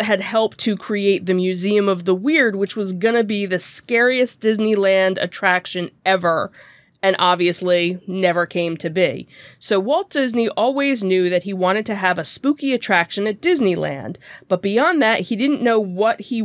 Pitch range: 175-220 Hz